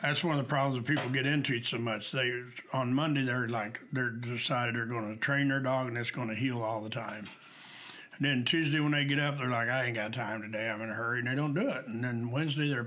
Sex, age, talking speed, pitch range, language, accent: male, 60-79, 280 wpm, 110-140 Hz, English, American